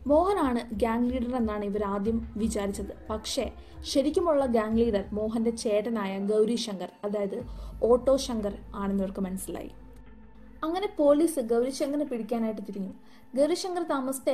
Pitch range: 215-265 Hz